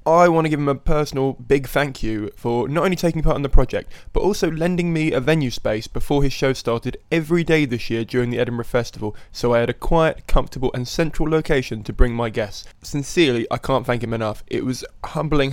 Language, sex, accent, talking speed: English, male, British, 230 wpm